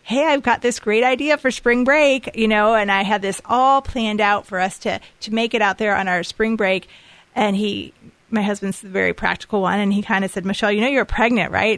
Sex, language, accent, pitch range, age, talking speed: female, English, American, 190-225 Hz, 30-49, 250 wpm